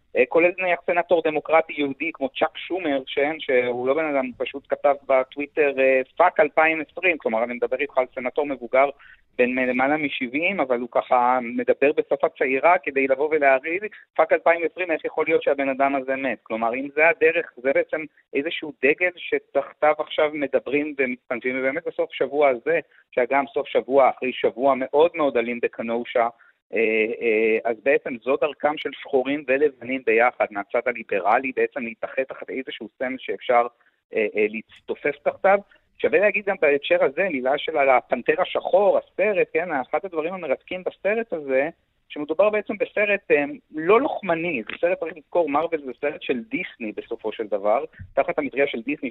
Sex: male